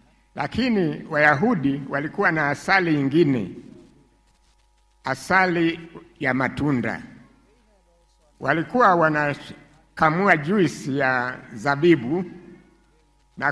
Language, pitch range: Swahili, 140-170 Hz